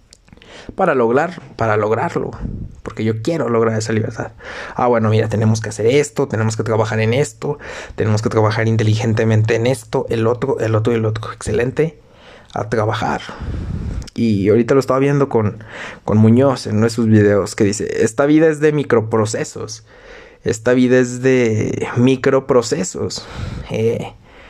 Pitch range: 110-125 Hz